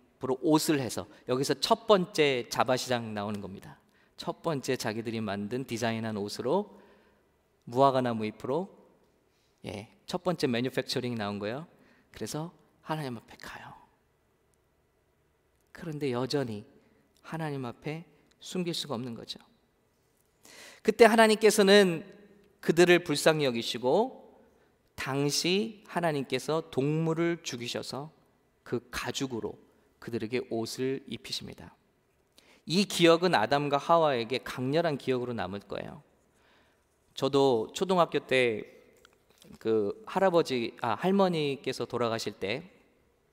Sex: male